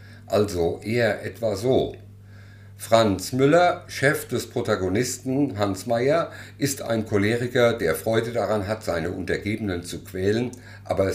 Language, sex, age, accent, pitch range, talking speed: German, male, 50-69, German, 100-115 Hz, 125 wpm